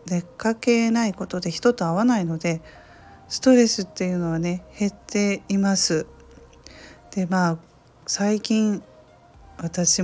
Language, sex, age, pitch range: Japanese, female, 40-59, 160-195 Hz